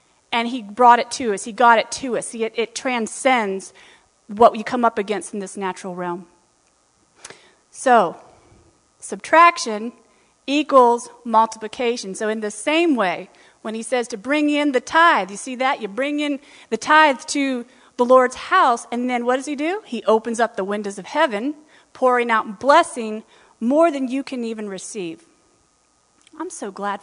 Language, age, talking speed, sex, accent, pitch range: English, 30-49, 170 wpm, female, American, 215-285 Hz